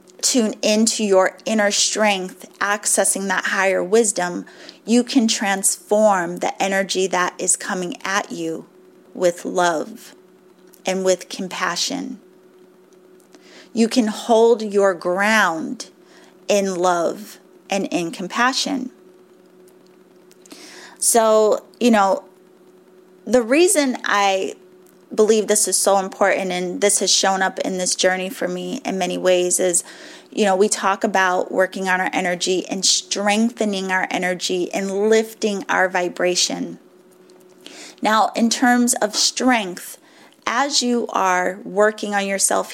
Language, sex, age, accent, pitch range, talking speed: English, female, 30-49, American, 185-225 Hz, 120 wpm